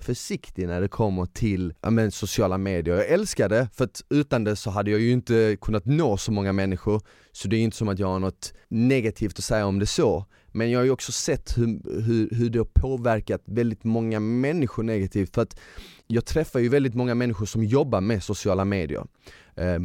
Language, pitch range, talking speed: Swedish, 105-130 Hz, 215 wpm